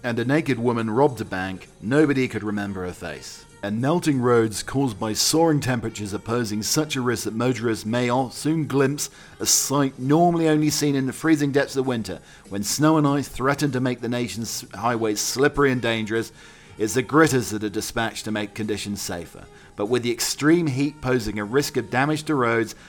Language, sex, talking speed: English, male, 195 wpm